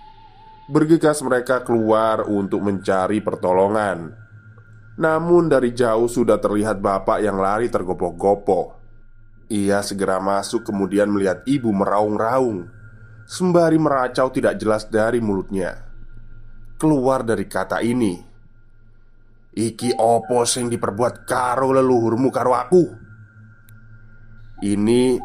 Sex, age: male, 20-39